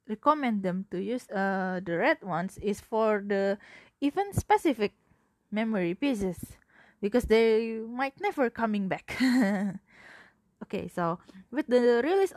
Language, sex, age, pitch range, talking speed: English, female, 20-39, 195-265 Hz, 125 wpm